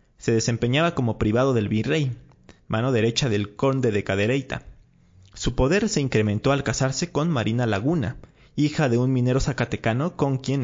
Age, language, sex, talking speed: 30-49, Spanish, male, 160 wpm